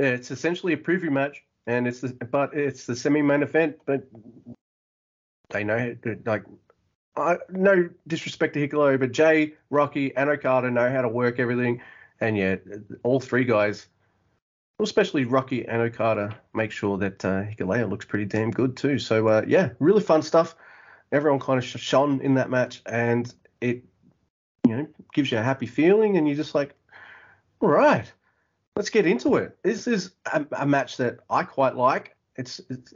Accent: Australian